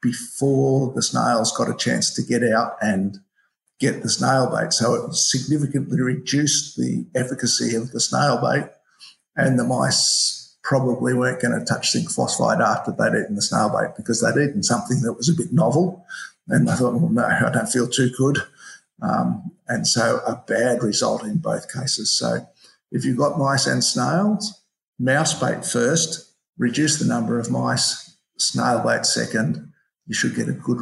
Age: 50-69